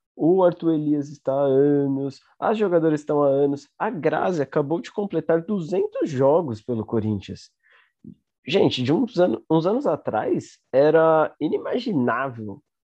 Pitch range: 130-180 Hz